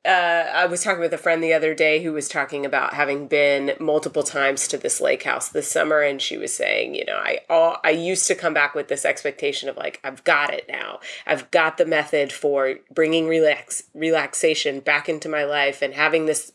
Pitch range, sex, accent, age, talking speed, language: 145-180 Hz, female, American, 30-49, 220 wpm, English